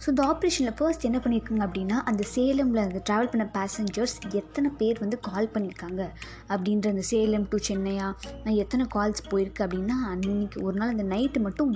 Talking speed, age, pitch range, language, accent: 170 wpm, 20-39, 200-245 Hz, Tamil, native